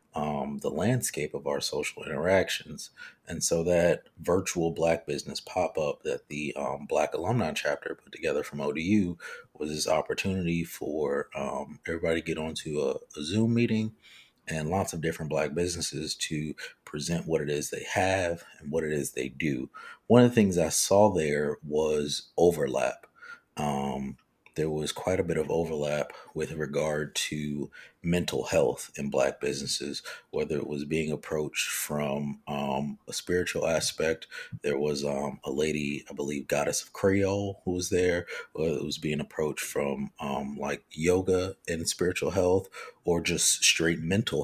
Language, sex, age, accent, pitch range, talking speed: English, male, 30-49, American, 75-95 Hz, 165 wpm